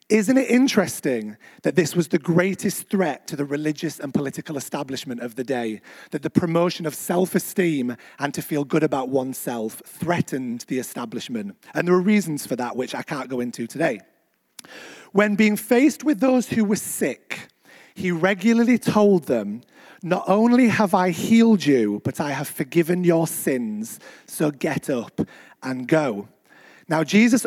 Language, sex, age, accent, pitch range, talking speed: English, male, 30-49, British, 140-195 Hz, 165 wpm